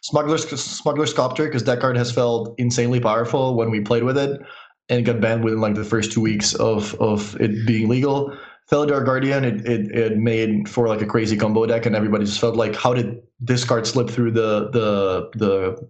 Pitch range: 120-150 Hz